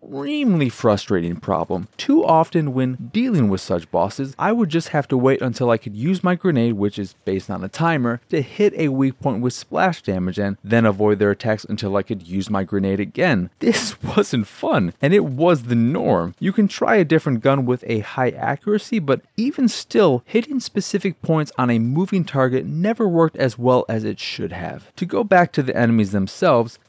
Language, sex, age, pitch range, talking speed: English, male, 30-49, 115-180 Hz, 205 wpm